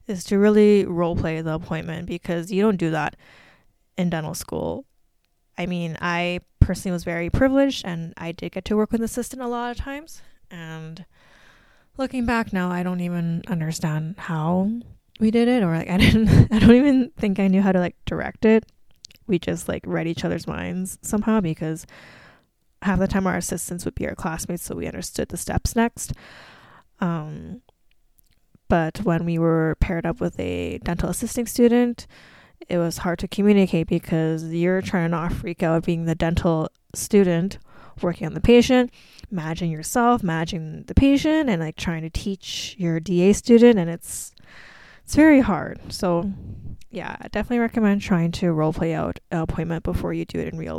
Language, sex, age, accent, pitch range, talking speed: English, female, 10-29, American, 165-215 Hz, 180 wpm